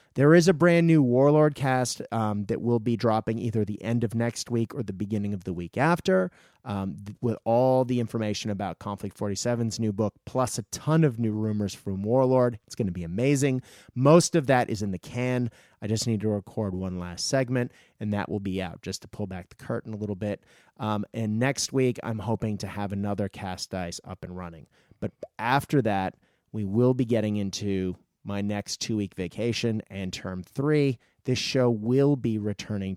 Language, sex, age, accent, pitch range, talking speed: English, male, 30-49, American, 105-130 Hz, 200 wpm